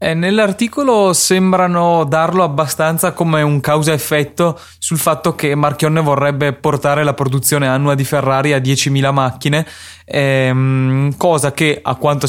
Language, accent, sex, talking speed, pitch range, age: Italian, native, male, 135 wpm, 130-150 Hz, 20-39